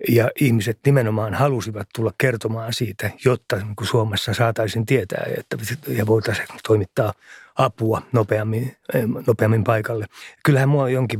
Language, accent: Finnish, native